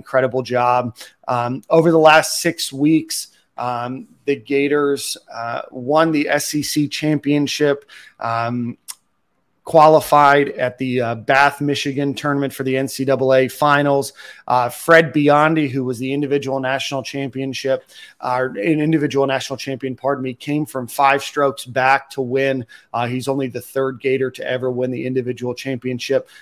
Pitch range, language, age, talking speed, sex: 130-145 Hz, English, 30-49, 145 wpm, male